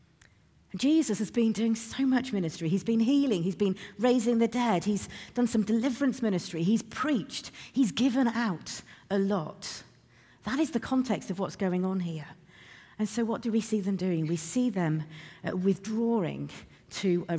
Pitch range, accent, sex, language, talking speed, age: 155-210 Hz, British, female, English, 175 wpm, 50-69